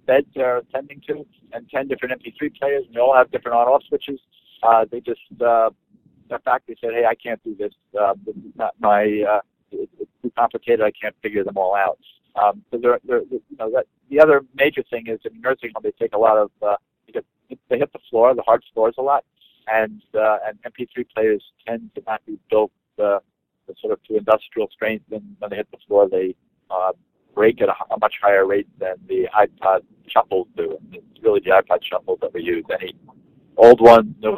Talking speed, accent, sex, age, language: 220 wpm, American, male, 50-69, English